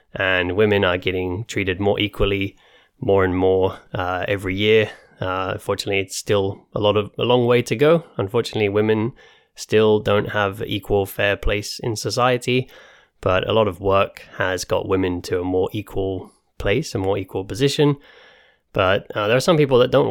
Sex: male